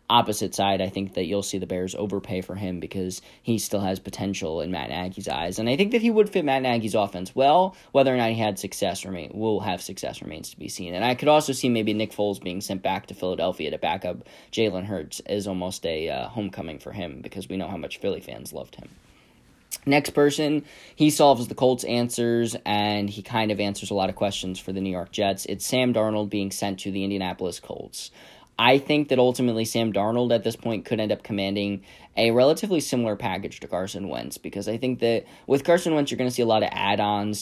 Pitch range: 100-120 Hz